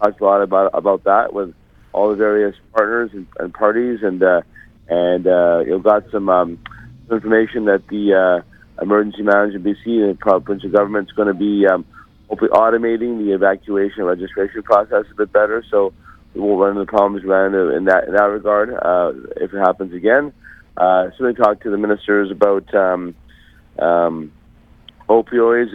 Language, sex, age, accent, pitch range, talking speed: English, male, 50-69, American, 95-110 Hz, 180 wpm